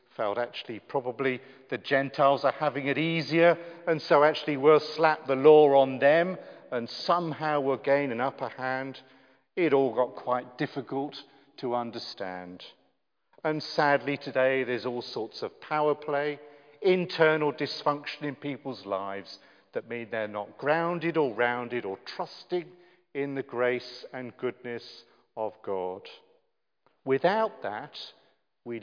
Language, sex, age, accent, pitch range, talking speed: English, male, 50-69, British, 125-150 Hz, 135 wpm